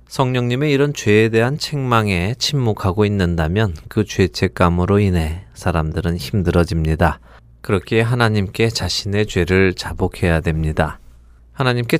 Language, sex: Korean, male